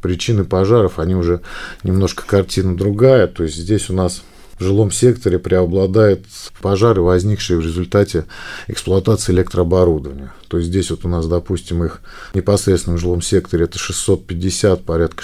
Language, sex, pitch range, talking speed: Russian, male, 85-105 Hz, 145 wpm